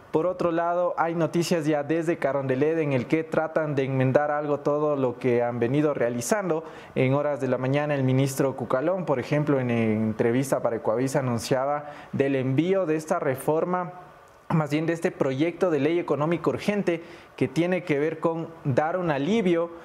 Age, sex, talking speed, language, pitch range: 20-39, male, 175 wpm, English, 130-170 Hz